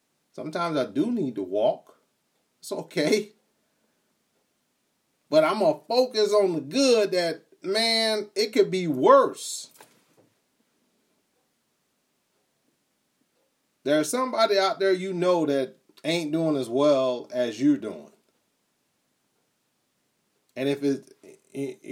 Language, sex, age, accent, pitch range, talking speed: English, male, 30-49, American, 145-215 Hz, 105 wpm